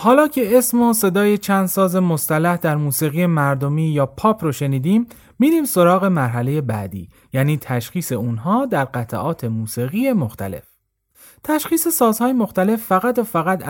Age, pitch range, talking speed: 30-49, 120-195 Hz, 140 wpm